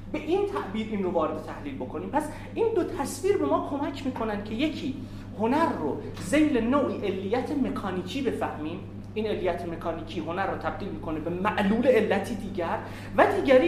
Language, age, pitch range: Persian, 30-49, 190-295 Hz